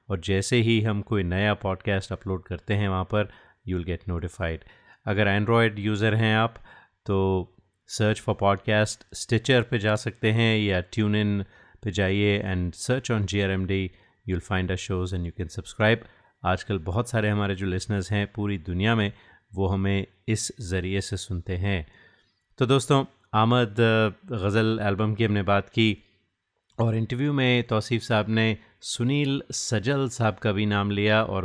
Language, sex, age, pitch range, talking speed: Hindi, male, 30-49, 95-115 Hz, 170 wpm